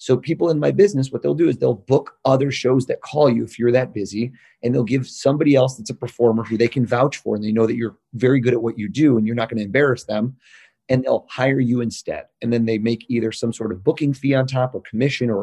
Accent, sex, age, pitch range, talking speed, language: American, male, 30-49, 115-145 Hz, 275 wpm, English